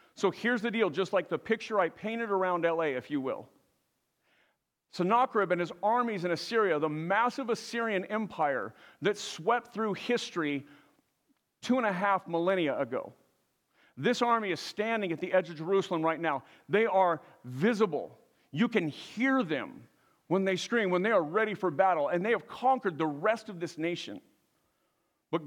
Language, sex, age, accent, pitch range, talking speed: English, male, 50-69, American, 175-235 Hz, 170 wpm